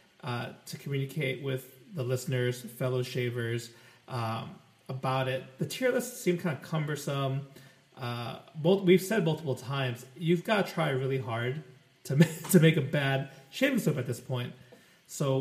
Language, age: English, 30-49